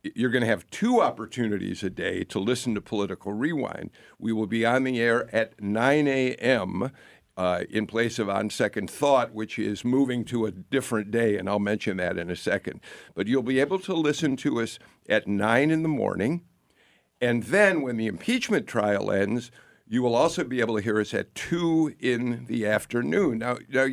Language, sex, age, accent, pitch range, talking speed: English, male, 50-69, American, 110-140 Hz, 195 wpm